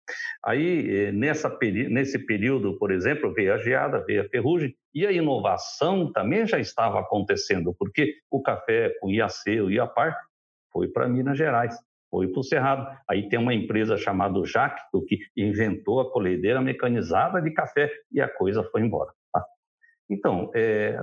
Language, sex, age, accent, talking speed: Portuguese, male, 60-79, Brazilian, 160 wpm